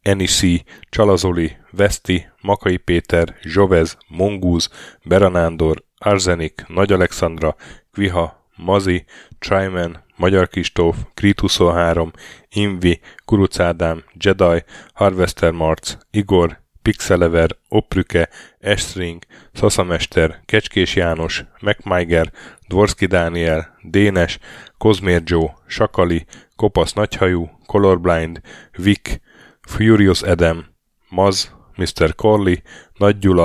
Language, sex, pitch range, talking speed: Hungarian, male, 85-100 Hz, 85 wpm